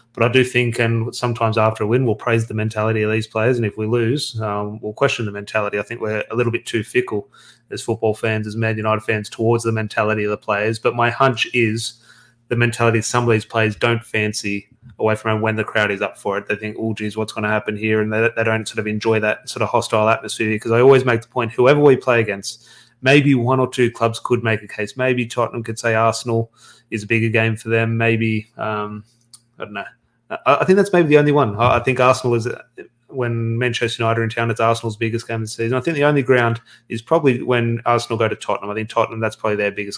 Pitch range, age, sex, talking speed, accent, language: 110-120 Hz, 20-39, male, 250 wpm, Australian, English